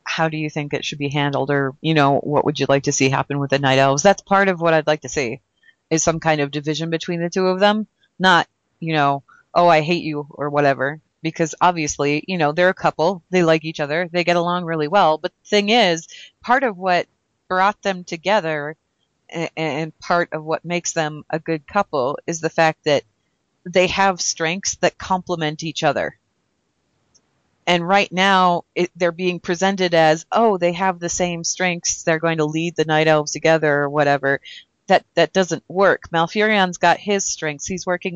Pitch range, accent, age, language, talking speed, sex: 155-185 Hz, American, 30-49, English, 205 wpm, female